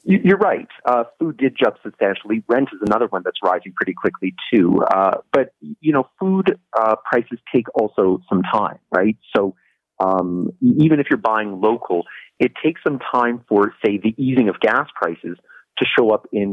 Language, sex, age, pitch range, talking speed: English, male, 40-59, 95-130 Hz, 180 wpm